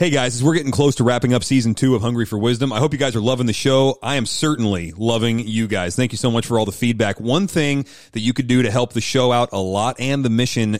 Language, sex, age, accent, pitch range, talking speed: English, male, 30-49, American, 105-135 Hz, 290 wpm